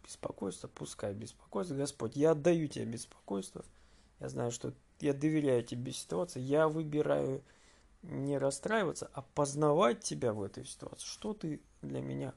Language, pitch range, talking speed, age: Russian, 115-155 Hz, 140 wpm, 20-39